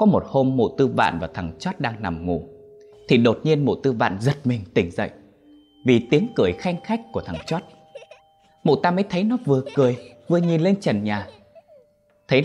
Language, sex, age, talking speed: Vietnamese, male, 20-39, 205 wpm